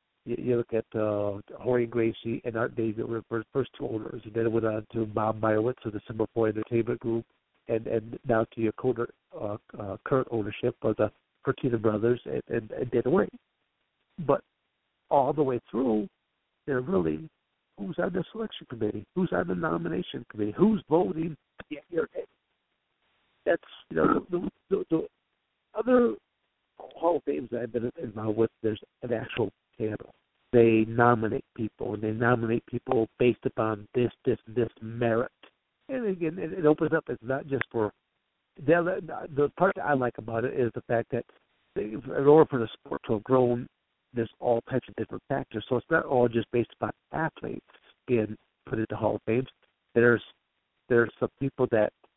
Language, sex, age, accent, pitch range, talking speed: English, male, 60-79, American, 110-135 Hz, 175 wpm